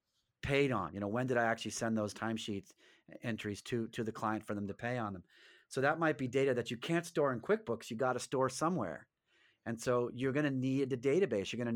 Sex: male